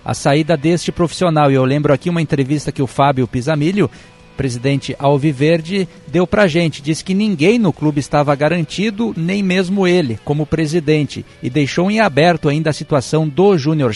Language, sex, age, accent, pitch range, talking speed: Portuguese, male, 50-69, Brazilian, 145-175 Hz, 175 wpm